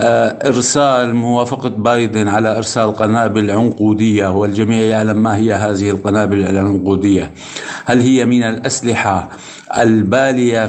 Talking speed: 105 wpm